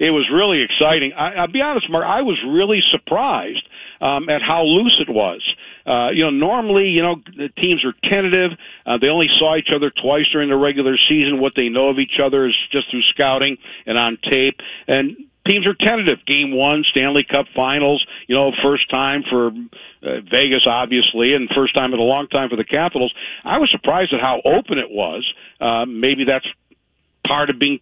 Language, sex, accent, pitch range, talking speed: English, male, American, 125-155 Hz, 205 wpm